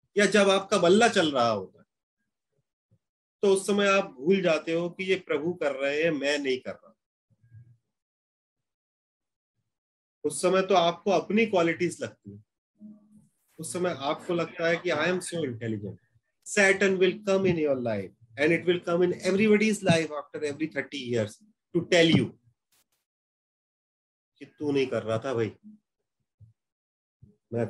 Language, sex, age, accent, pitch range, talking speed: Hindi, male, 30-49, native, 120-195 Hz, 130 wpm